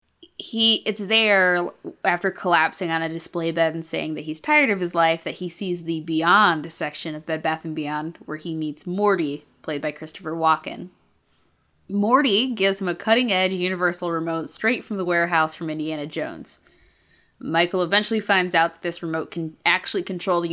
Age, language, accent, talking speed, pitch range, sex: 20-39, English, American, 180 wpm, 160-200 Hz, female